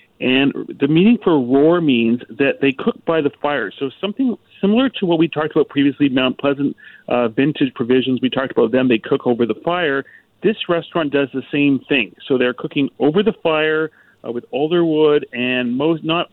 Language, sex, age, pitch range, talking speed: English, male, 40-59, 125-150 Hz, 200 wpm